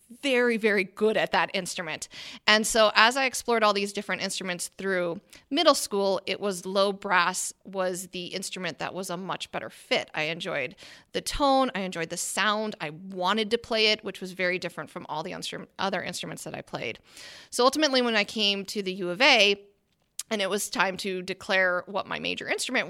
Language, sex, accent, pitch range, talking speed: English, female, American, 180-215 Hz, 200 wpm